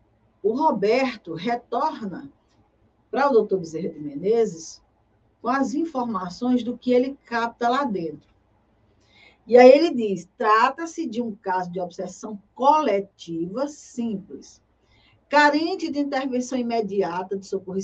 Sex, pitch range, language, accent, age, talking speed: female, 180-275 Hz, Portuguese, Brazilian, 50-69, 120 wpm